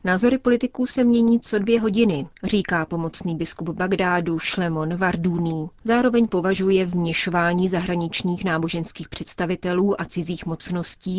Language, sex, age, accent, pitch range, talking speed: Czech, female, 30-49, native, 170-200 Hz, 120 wpm